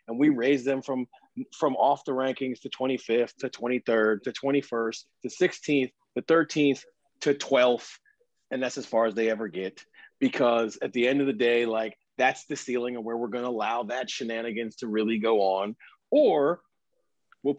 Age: 30-49